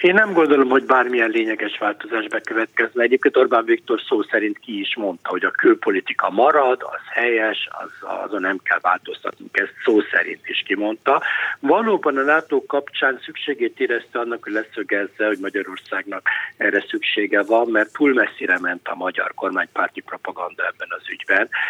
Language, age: Hungarian, 60-79